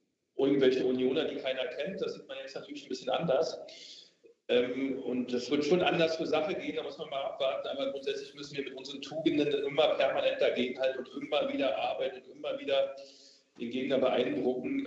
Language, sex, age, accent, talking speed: German, male, 40-59, German, 185 wpm